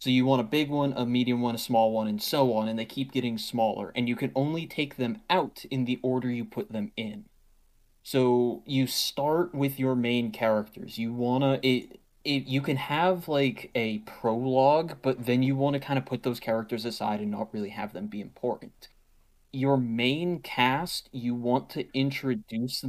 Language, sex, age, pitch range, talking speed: English, male, 20-39, 110-135 Hz, 200 wpm